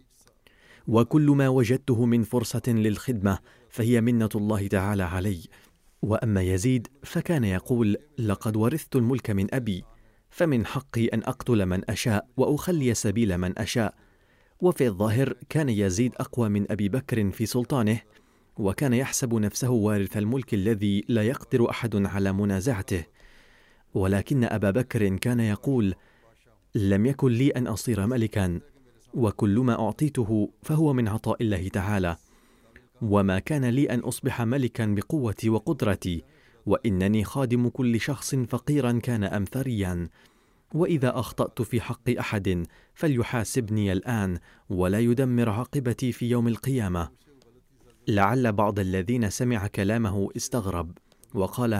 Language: Arabic